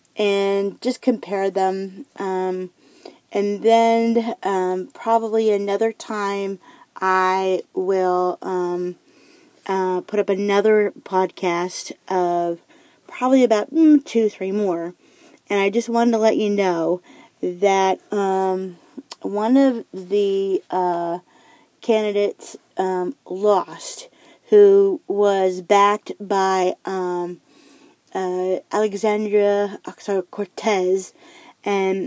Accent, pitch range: American, 190-230 Hz